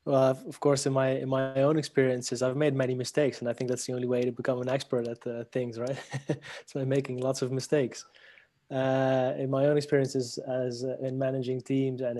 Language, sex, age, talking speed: English, male, 20-39, 225 wpm